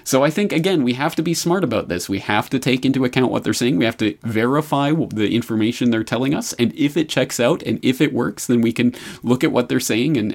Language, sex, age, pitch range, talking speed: English, male, 30-49, 100-125 Hz, 275 wpm